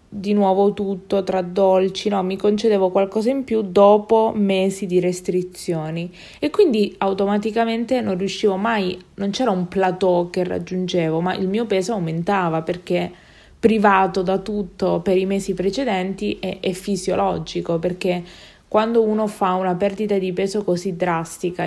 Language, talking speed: Italian, 145 wpm